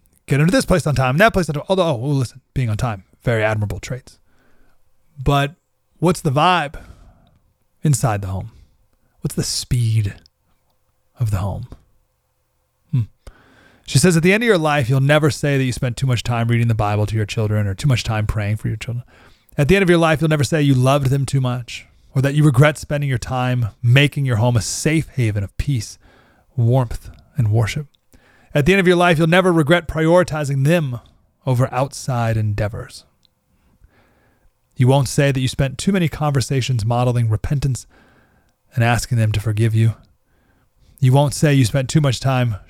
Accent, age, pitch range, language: American, 30-49, 110-145 Hz, English